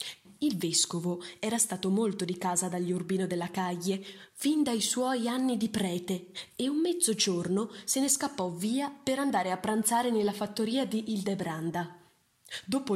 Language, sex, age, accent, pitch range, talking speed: Italian, female, 20-39, native, 185-230 Hz, 155 wpm